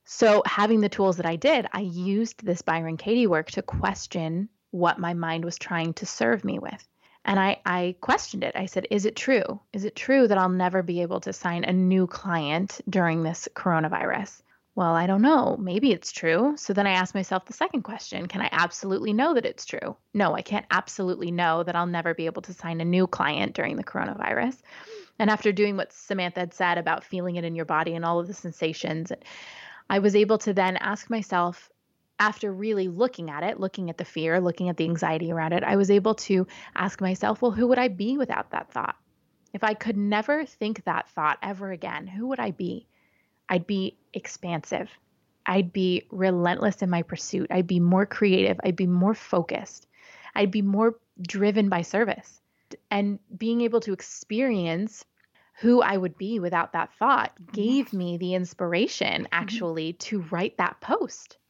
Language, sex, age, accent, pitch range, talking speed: English, female, 20-39, American, 175-215 Hz, 195 wpm